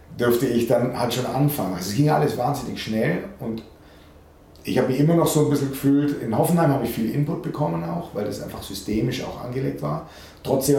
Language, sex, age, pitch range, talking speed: German, male, 40-59, 105-135 Hz, 210 wpm